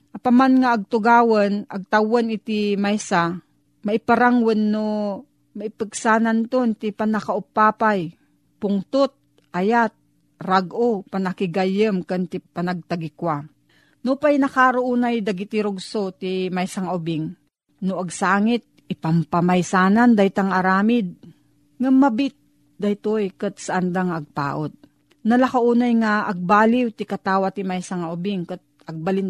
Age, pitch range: 40-59, 175-220 Hz